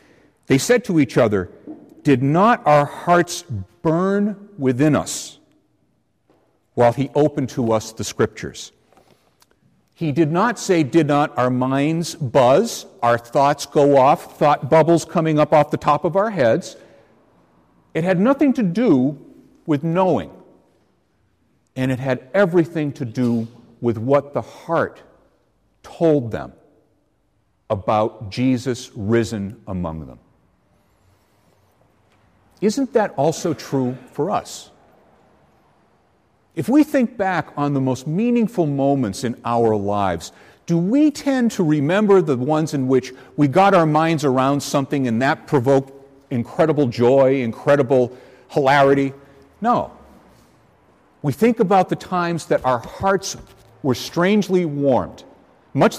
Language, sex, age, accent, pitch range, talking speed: English, male, 50-69, American, 125-170 Hz, 130 wpm